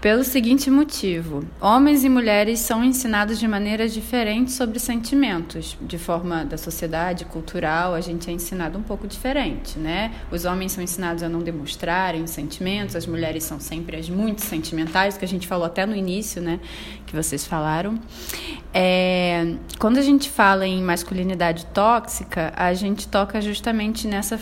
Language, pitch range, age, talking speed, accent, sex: Portuguese, 175-225 Hz, 20-39, 160 wpm, Brazilian, female